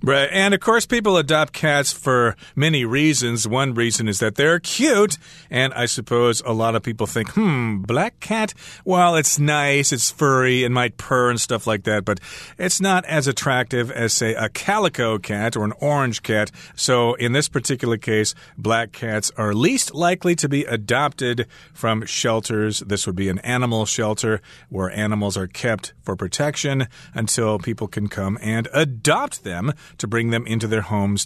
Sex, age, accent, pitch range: male, 40-59, American, 115-150 Hz